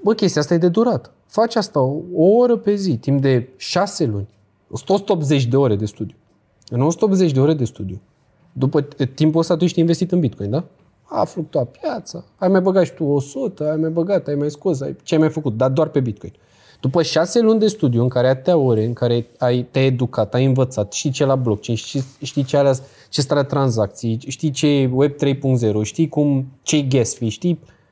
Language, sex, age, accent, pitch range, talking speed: Romanian, male, 20-39, native, 130-200 Hz, 215 wpm